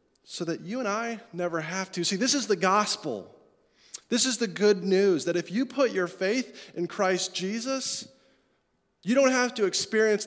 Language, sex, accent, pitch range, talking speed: English, male, American, 165-220 Hz, 185 wpm